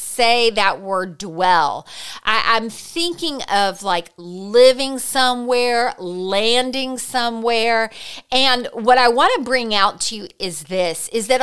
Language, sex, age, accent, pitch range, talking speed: English, female, 40-59, American, 190-255 Hz, 130 wpm